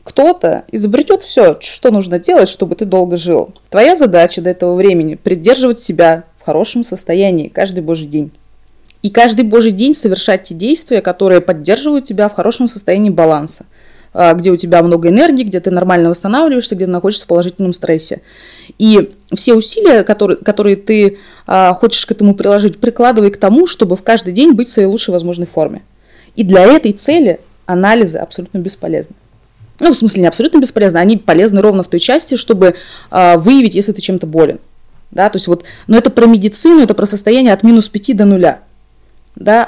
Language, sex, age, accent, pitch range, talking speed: Russian, female, 20-39, native, 180-235 Hz, 180 wpm